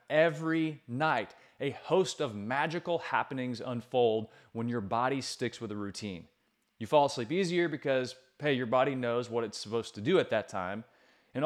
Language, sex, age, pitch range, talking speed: English, male, 30-49, 115-155 Hz, 175 wpm